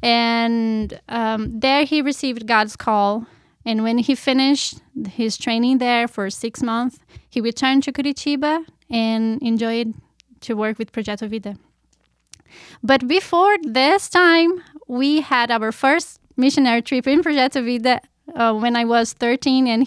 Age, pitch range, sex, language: 10-29, 220-265 Hz, female, English